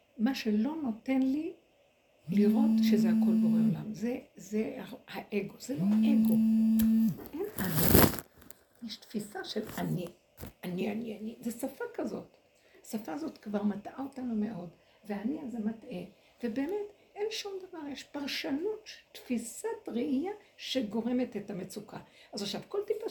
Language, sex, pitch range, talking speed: Hebrew, female, 220-310 Hz, 130 wpm